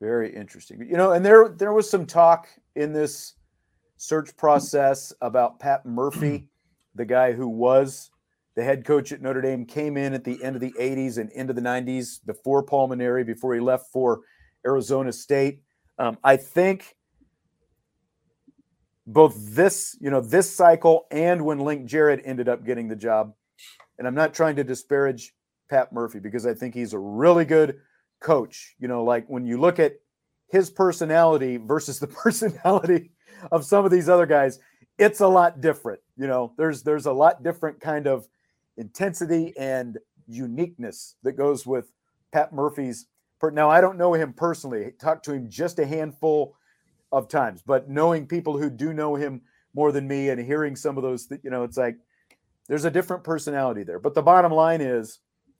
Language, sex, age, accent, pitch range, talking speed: English, male, 40-59, American, 125-165 Hz, 180 wpm